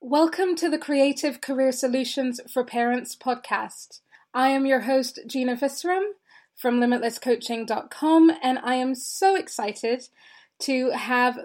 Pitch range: 235-295 Hz